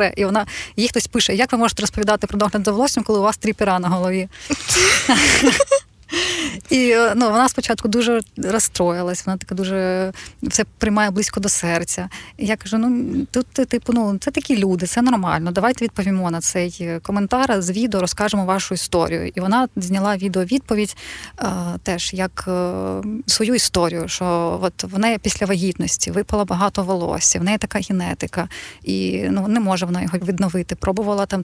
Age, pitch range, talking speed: 20-39, 185-220 Hz, 170 wpm